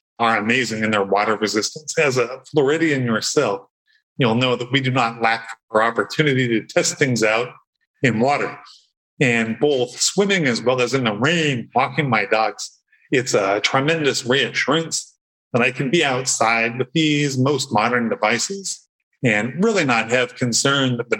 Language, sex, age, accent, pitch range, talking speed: English, male, 40-59, American, 115-155 Hz, 165 wpm